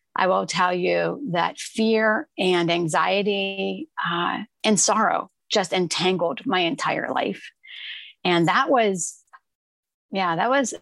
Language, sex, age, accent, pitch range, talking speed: English, female, 30-49, American, 170-220 Hz, 115 wpm